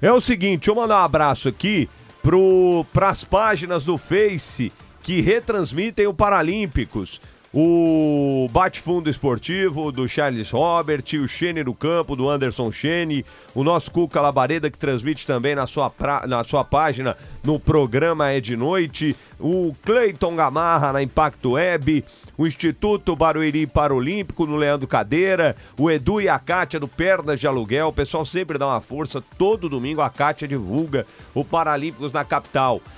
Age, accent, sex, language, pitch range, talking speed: 40-59, Brazilian, male, Portuguese, 140-175 Hz, 155 wpm